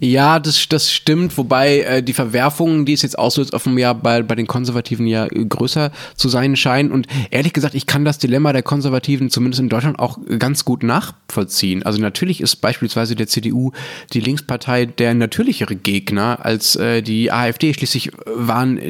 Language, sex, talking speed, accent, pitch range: German, male, 170 wpm, German, 110-140 Hz